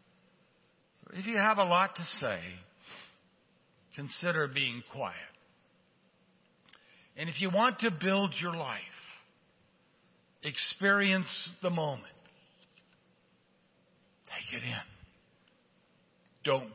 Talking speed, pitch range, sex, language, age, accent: 90 wpm, 120-180 Hz, male, English, 60-79, American